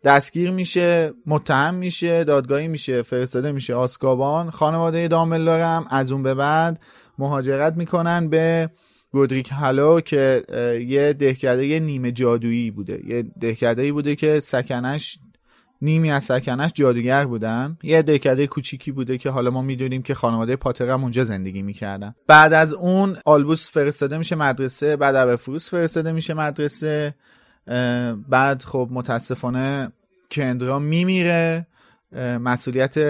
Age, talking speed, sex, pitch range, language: 30-49, 130 wpm, male, 125-155 Hz, Persian